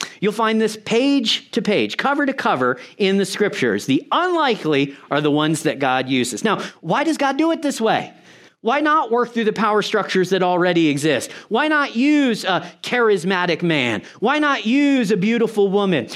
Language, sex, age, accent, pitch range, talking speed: English, male, 40-59, American, 180-245 Hz, 185 wpm